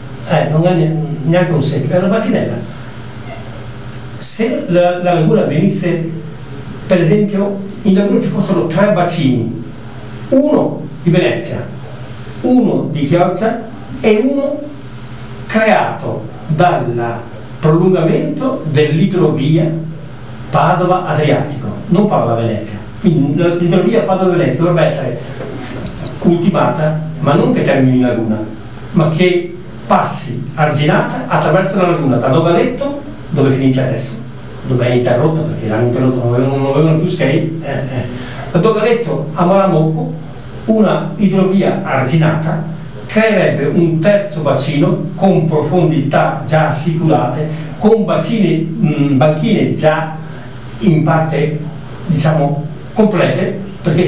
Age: 50-69